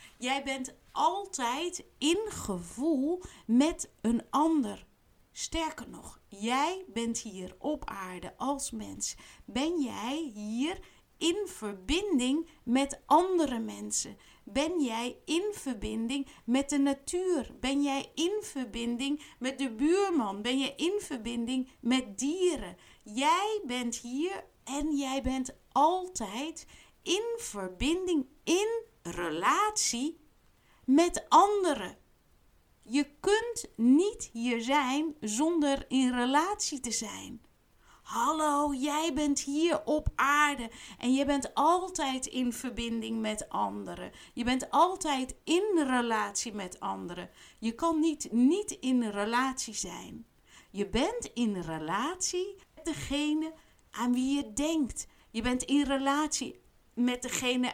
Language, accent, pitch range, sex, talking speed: Dutch, Dutch, 240-320 Hz, female, 115 wpm